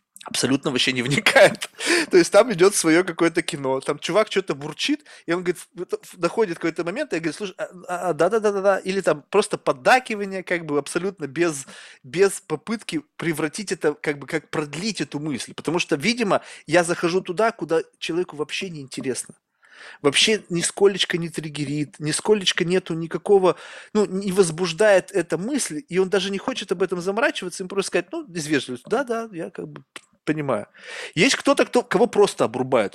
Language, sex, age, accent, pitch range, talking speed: Russian, male, 20-39, native, 150-200 Hz, 165 wpm